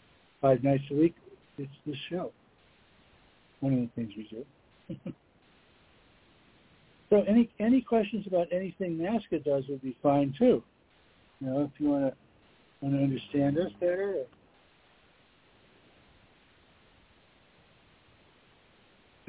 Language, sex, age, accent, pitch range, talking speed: English, male, 60-79, American, 135-170 Hz, 115 wpm